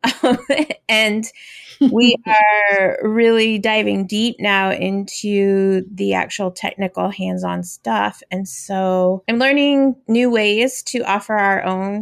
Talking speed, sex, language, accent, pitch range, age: 115 wpm, female, English, American, 180-210 Hz, 30-49